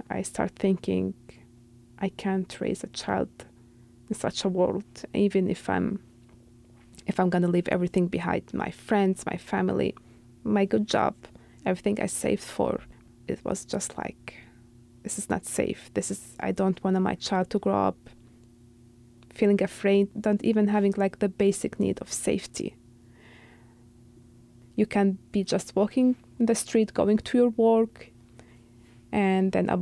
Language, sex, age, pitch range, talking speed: English, female, 20-39, 120-200 Hz, 155 wpm